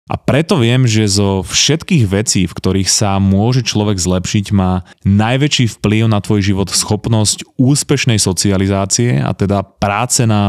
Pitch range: 95-115 Hz